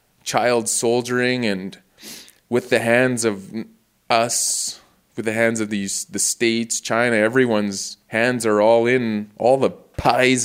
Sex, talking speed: male, 140 wpm